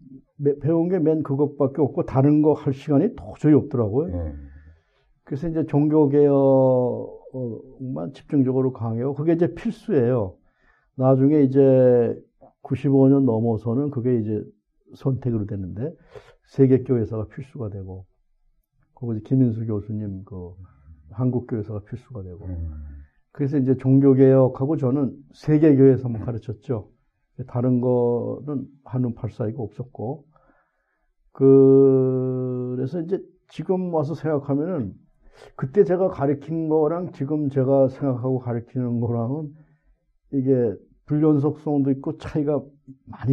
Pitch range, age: 120-145 Hz, 60-79